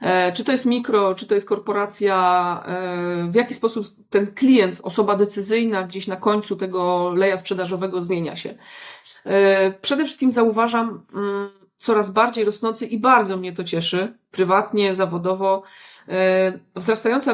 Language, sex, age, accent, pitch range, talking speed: Polish, female, 30-49, native, 185-220 Hz, 130 wpm